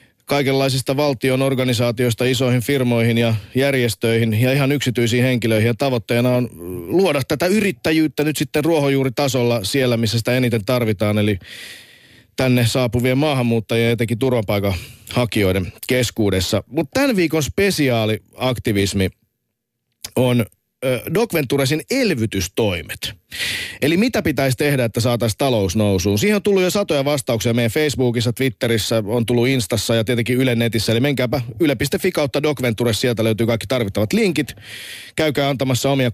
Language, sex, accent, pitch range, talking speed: Finnish, male, native, 115-140 Hz, 125 wpm